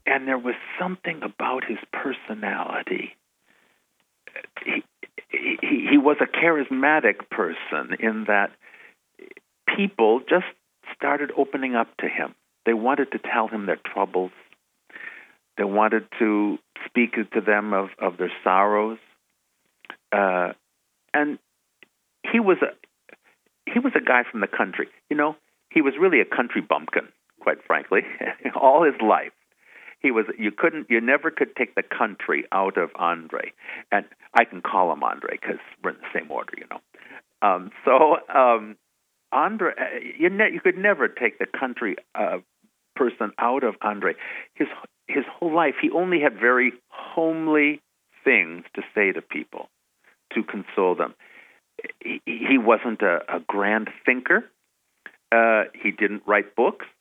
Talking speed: 145 wpm